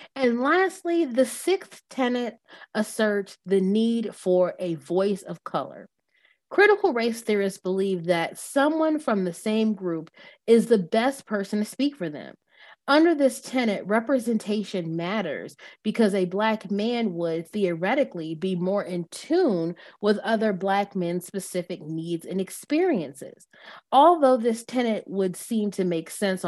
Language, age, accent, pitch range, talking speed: English, 30-49, American, 180-255 Hz, 140 wpm